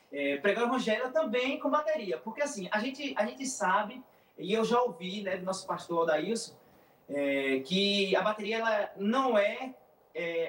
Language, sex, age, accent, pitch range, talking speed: Portuguese, male, 20-39, Brazilian, 190-260 Hz, 175 wpm